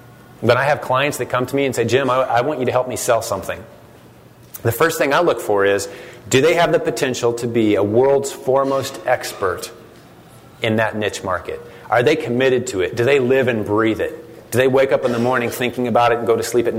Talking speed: 240 wpm